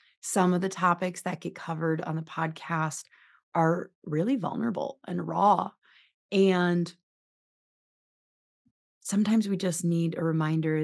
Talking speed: 120 wpm